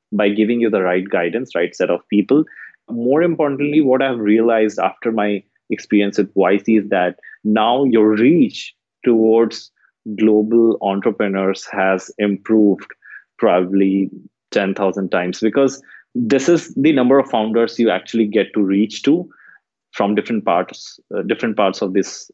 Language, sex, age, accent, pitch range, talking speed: English, male, 20-39, Indian, 100-115 Hz, 140 wpm